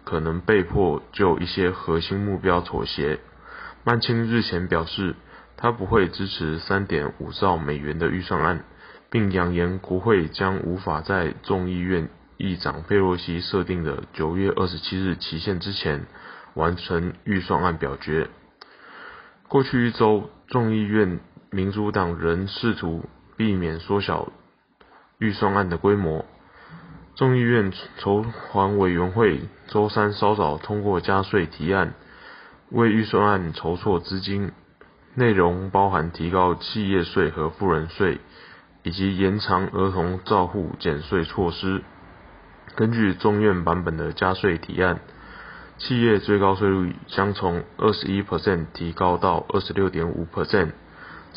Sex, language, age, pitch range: male, Chinese, 20-39, 85-100 Hz